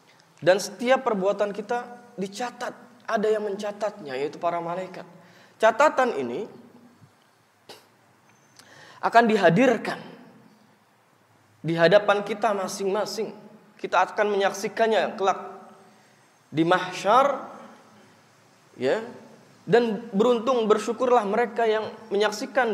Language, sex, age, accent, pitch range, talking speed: Indonesian, male, 20-39, native, 155-220 Hz, 85 wpm